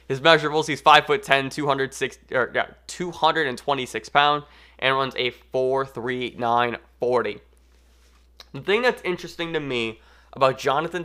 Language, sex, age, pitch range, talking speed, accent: English, male, 20-39, 115-150 Hz, 110 wpm, American